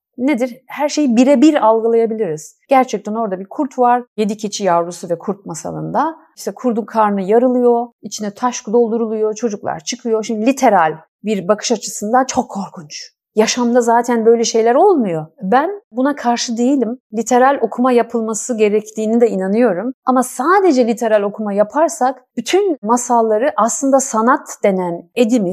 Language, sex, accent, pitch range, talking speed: Turkish, female, native, 200-250 Hz, 135 wpm